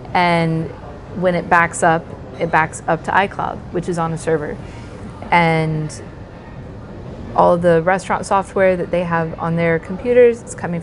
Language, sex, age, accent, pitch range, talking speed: English, female, 30-49, American, 160-180 Hz, 160 wpm